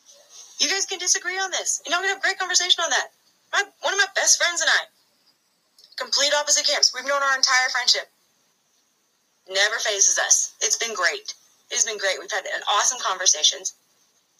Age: 30-49